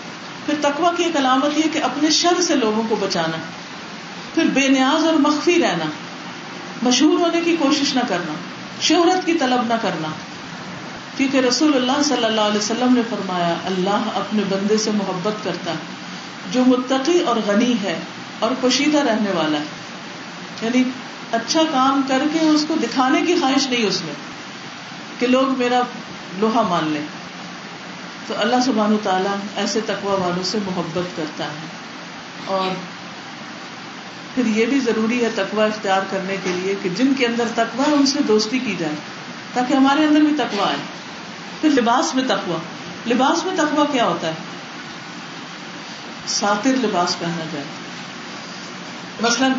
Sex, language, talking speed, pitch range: female, Urdu, 155 wpm, 195-270 Hz